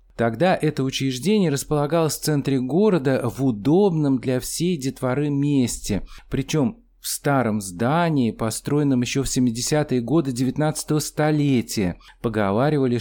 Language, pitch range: Russian, 115-150 Hz